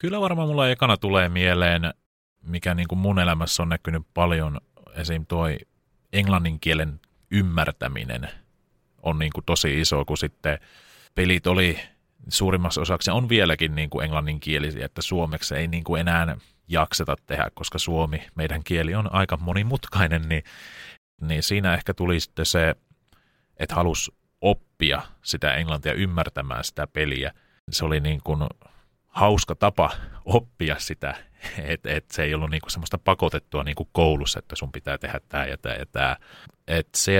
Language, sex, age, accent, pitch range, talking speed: Finnish, male, 30-49, native, 75-90 Hz, 155 wpm